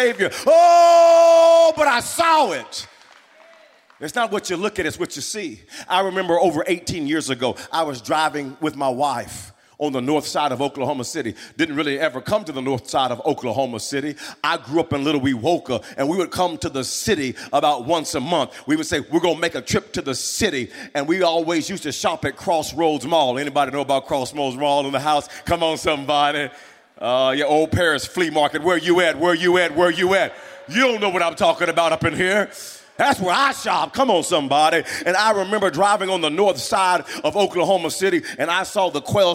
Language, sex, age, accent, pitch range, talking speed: English, male, 40-59, American, 150-195 Hz, 215 wpm